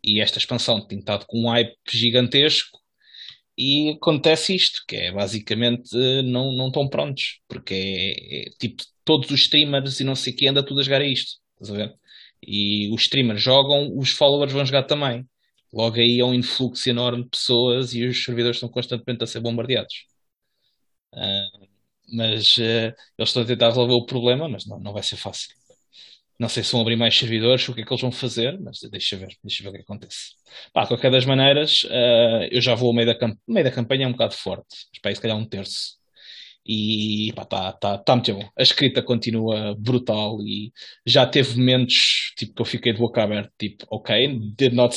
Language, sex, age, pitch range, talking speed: English, male, 20-39, 110-130 Hz, 200 wpm